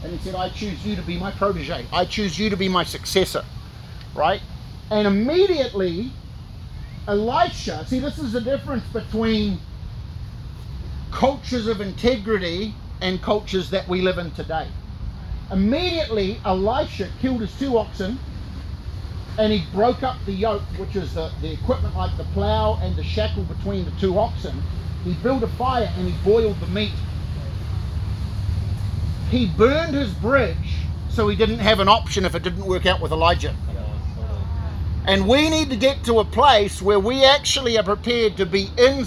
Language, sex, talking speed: English, male, 165 wpm